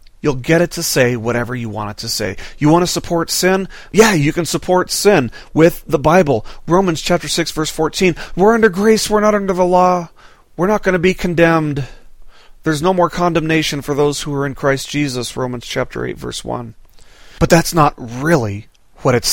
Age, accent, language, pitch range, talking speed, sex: 40-59, American, English, 130-175 Hz, 200 wpm, male